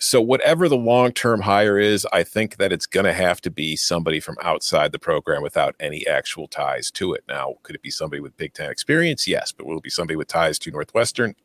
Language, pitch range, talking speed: English, 100-140 Hz, 235 wpm